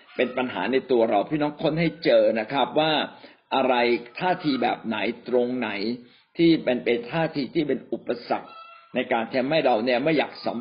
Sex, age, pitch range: male, 60-79, 125-170 Hz